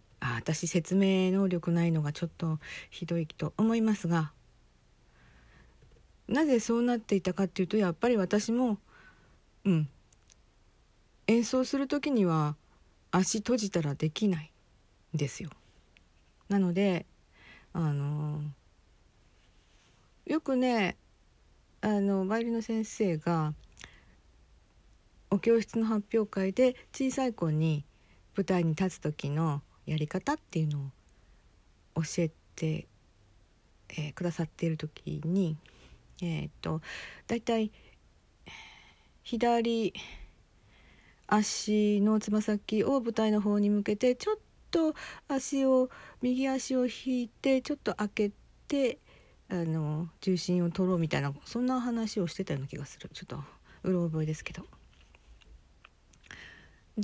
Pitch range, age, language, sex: 150-220 Hz, 50-69, Japanese, female